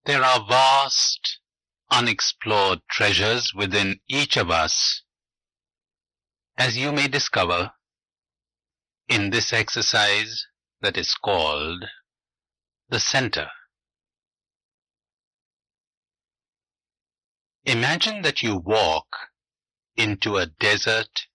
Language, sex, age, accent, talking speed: English, male, 60-79, Indian, 80 wpm